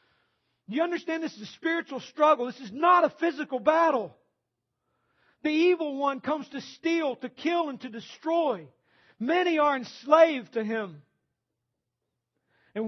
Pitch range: 180-270 Hz